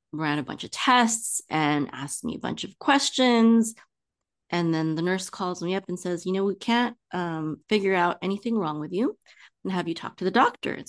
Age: 30-49